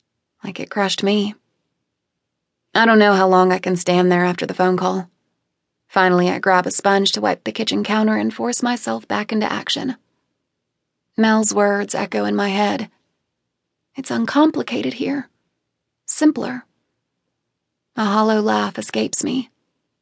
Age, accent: 20-39, American